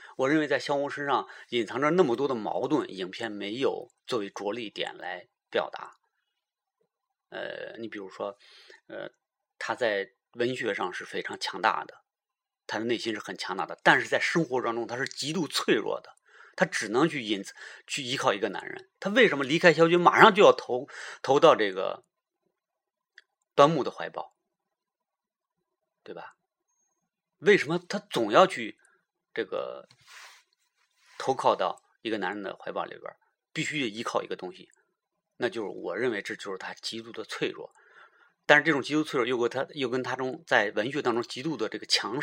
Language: Chinese